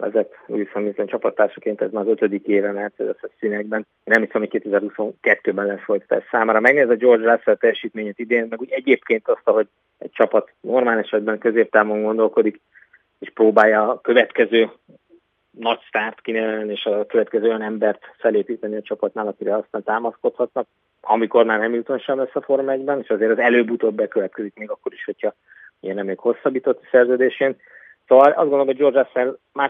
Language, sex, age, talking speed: Hungarian, male, 30-49, 170 wpm